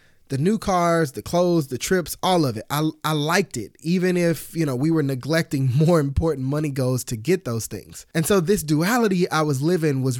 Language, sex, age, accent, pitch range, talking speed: English, male, 20-39, American, 125-165 Hz, 220 wpm